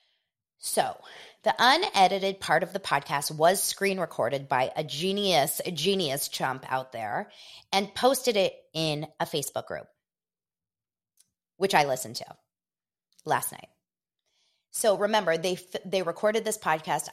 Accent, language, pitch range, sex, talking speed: American, English, 145-205 Hz, female, 135 wpm